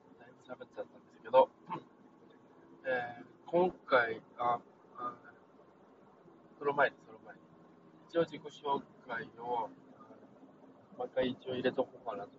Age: 20-39